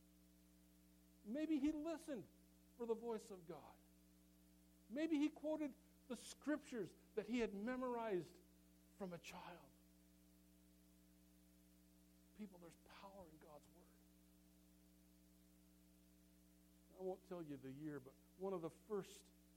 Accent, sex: American, male